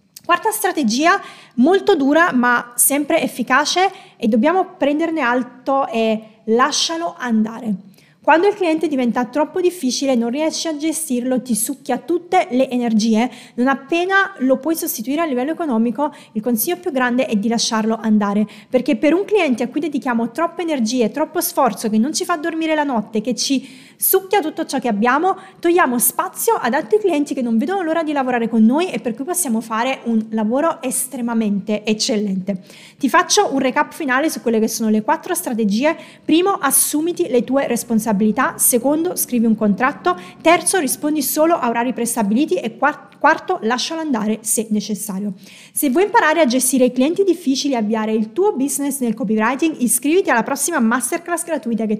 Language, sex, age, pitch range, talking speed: Italian, female, 20-39, 230-320 Hz, 170 wpm